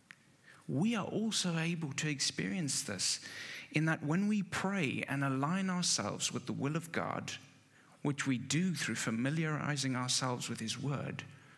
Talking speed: 150 wpm